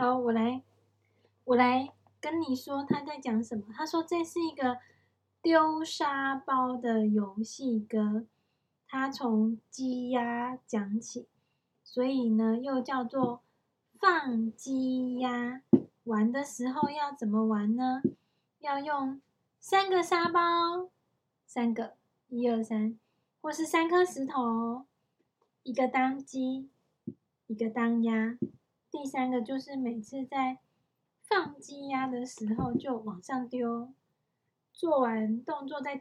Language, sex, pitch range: Chinese, female, 230-285 Hz